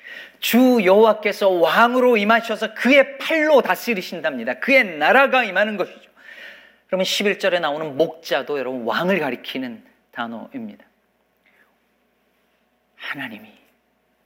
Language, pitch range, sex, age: Korean, 185-265 Hz, male, 40-59